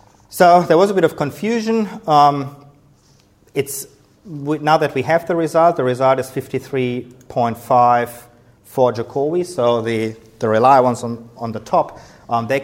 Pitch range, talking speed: 110-135 Hz, 155 wpm